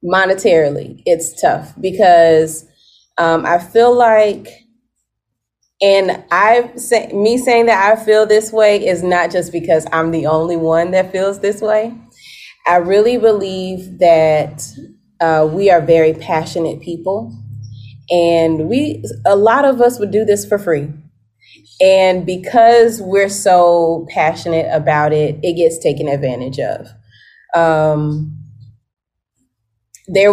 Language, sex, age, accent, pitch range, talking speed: English, female, 20-39, American, 150-205 Hz, 130 wpm